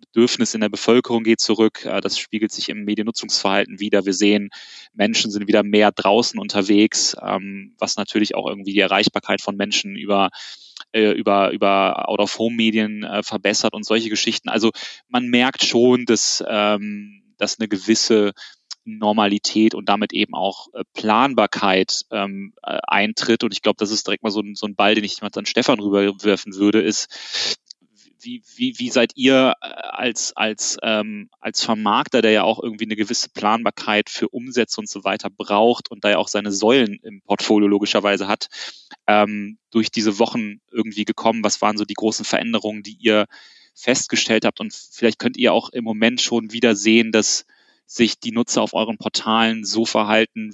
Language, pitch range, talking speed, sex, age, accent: German, 105-115 Hz, 160 wpm, male, 20-39, German